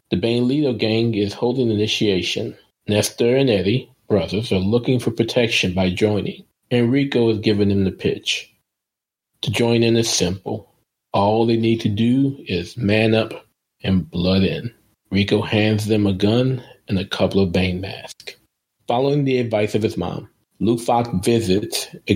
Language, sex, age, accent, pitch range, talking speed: English, male, 40-59, American, 100-120 Hz, 165 wpm